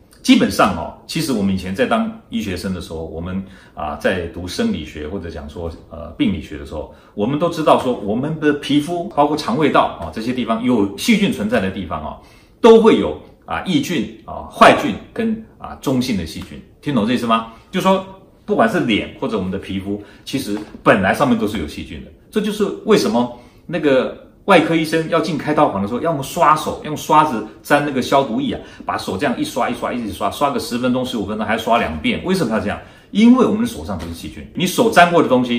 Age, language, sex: 40-59, Chinese, male